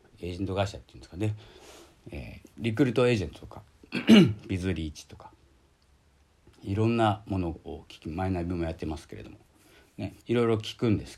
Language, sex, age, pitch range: Japanese, male, 40-59, 80-110 Hz